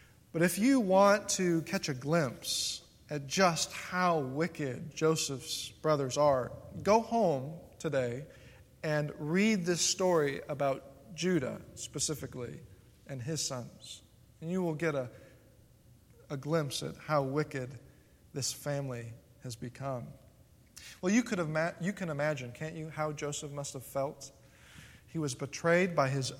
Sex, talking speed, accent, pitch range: male, 140 wpm, American, 140-185 Hz